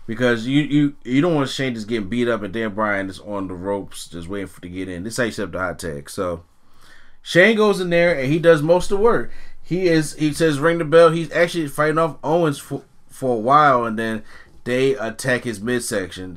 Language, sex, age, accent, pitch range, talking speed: English, male, 30-49, American, 110-150 Hz, 240 wpm